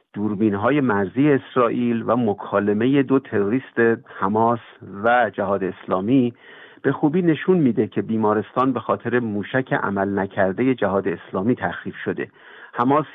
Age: 50-69